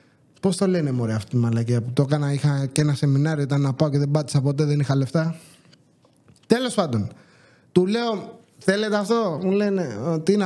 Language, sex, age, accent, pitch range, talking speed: English, male, 30-49, Greek, 165-210 Hz, 190 wpm